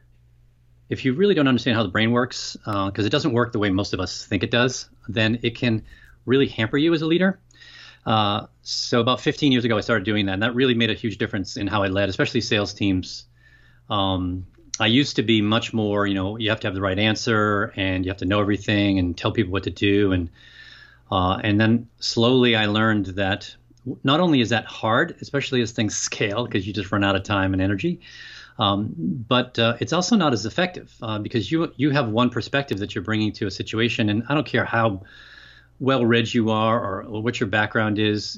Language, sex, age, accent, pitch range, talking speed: English, male, 30-49, American, 100-125 Hz, 225 wpm